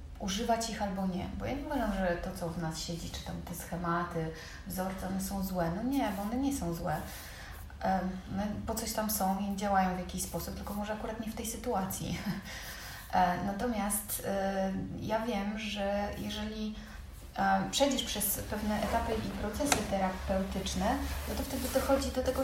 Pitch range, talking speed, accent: 180-215 Hz, 170 wpm, native